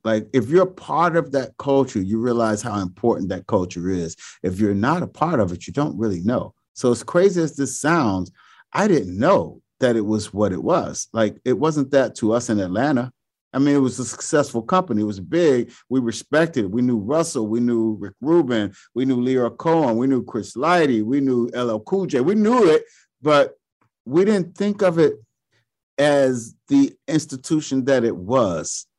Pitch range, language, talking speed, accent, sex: 105-155 Hz, English, 200 wpm, American, male